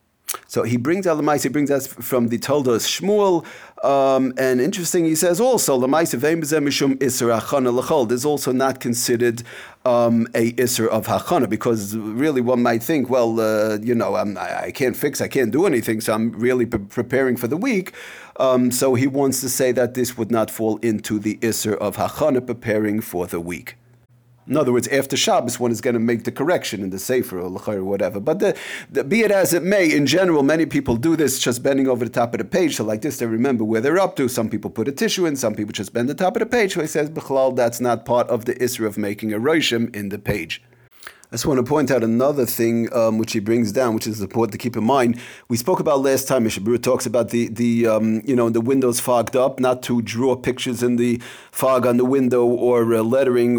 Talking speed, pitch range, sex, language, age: 235 wpm, 115-145 Hz, male, English, 40-59